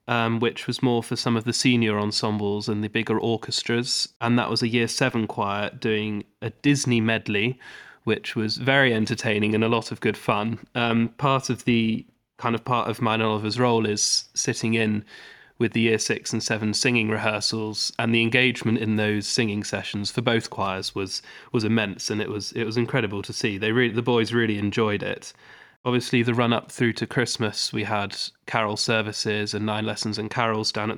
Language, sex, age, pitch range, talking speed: English, male, 20-39, 110-125 Hz, 200 wpm